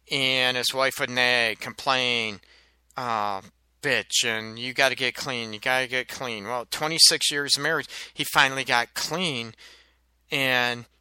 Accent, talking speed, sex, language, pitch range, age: American, 160 wpm, male, English, 120-160 Hz, 40-59